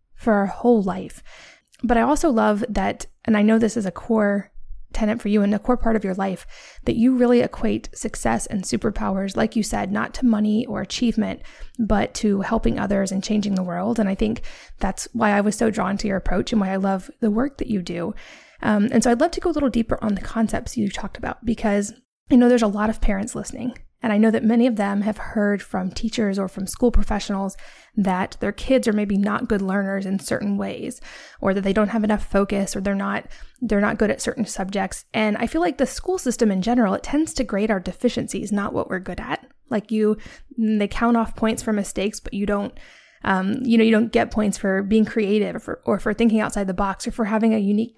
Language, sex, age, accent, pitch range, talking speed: English, female, 20-39, American, 200-235 Hz, 240 wpm